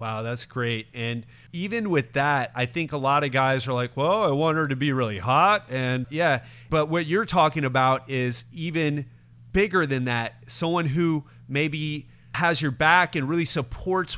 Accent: American